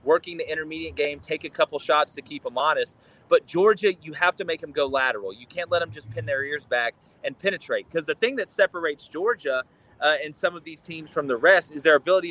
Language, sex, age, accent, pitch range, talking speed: English, male, 30-49, American, 150-225 Hz, 245 wpm